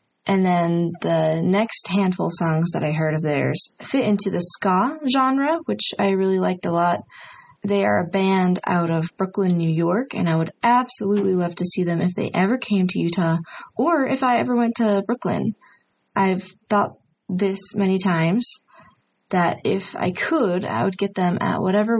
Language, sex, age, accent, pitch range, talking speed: English, female, 20-39, American, 180-230 Hz, 185 wpm